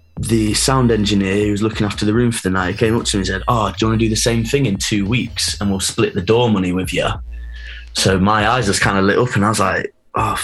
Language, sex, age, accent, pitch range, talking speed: English, male, 10-29, British, 95-110 Hz, 295 wpm